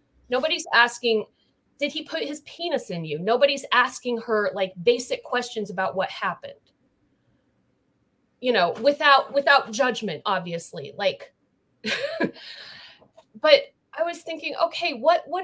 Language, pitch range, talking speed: English, 230-300 Hz, 125 wpm